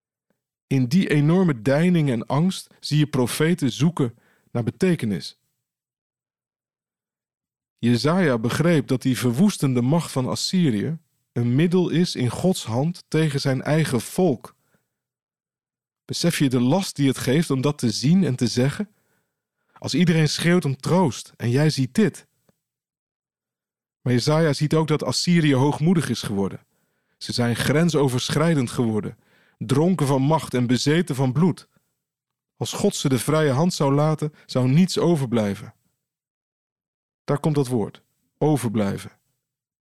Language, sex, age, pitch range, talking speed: Dutch, male, 50-69, 125-160 Hz, 135 wpm